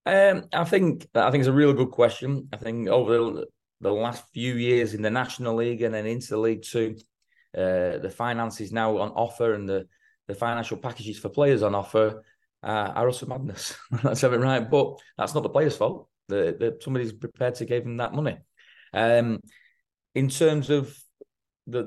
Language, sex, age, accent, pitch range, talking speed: English, male, 20-39, British, 115-130 Hz, 185 wpm